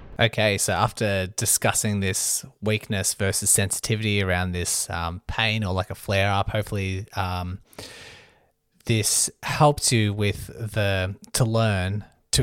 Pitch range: 95-115 Hz